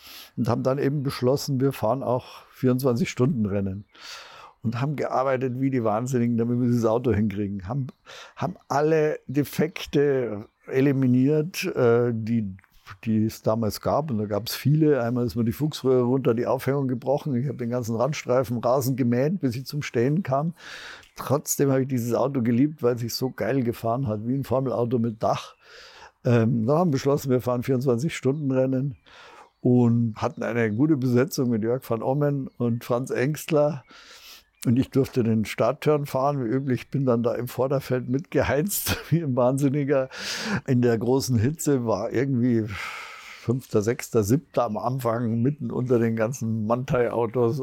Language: German